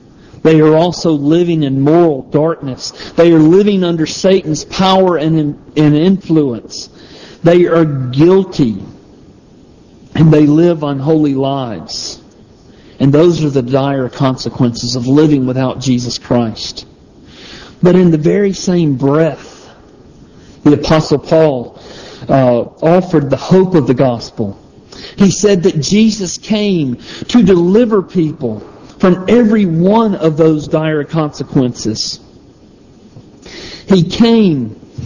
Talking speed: 115 wpm